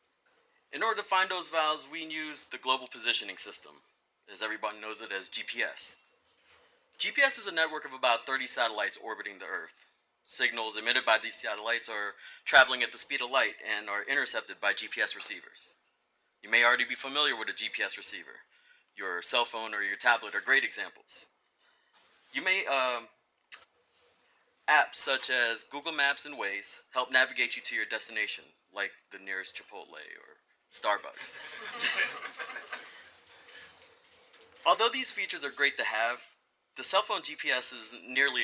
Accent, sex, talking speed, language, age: American, male, 160 wpm, English, 30-49